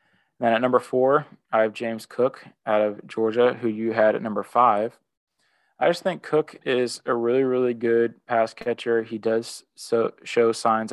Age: 20-39